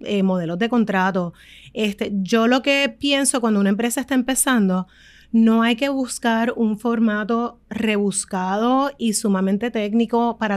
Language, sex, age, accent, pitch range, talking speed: Spanish, female, 30-49, American, 200-245 Hz, 140 wpm